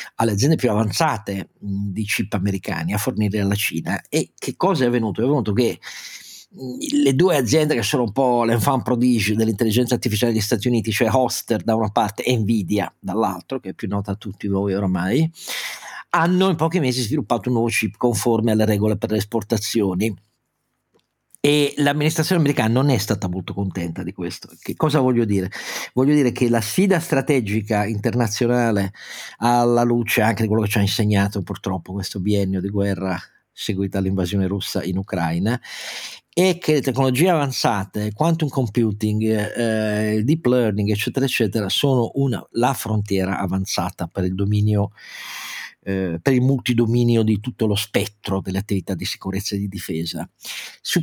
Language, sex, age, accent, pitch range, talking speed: Italian, male, 40-59, native, 100-125 Hz, 160 wpm